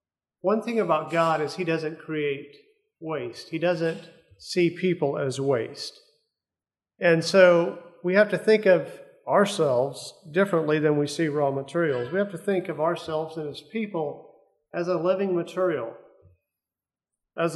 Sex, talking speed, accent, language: male, 145 wpm, American, English